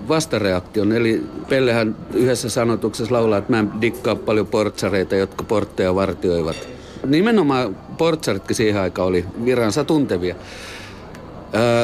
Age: 50-69